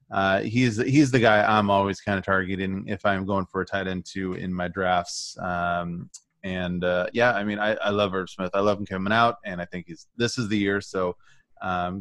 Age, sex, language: 30-49, male, English